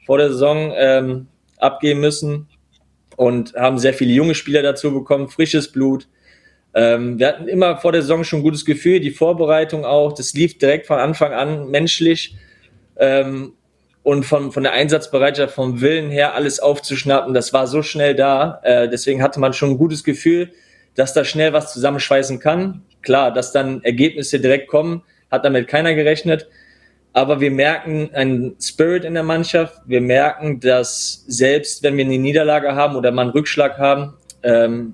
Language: German